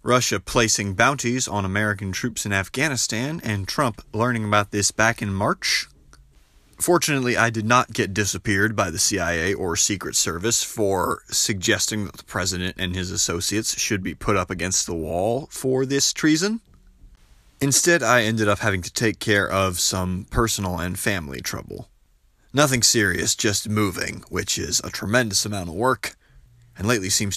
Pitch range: 95-120 Hz